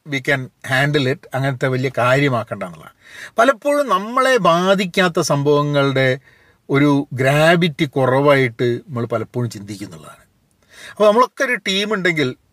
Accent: native